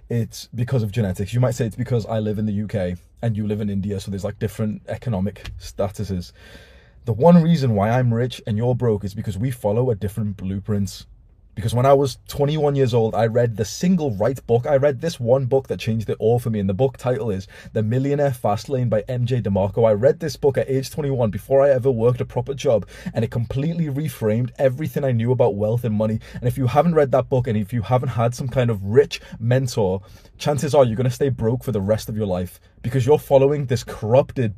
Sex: male